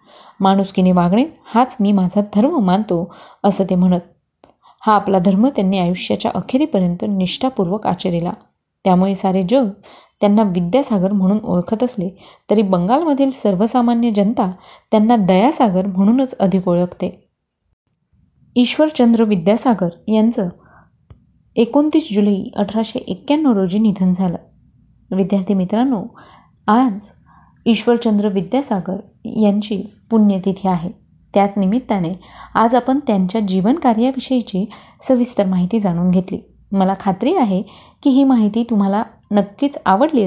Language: Marathi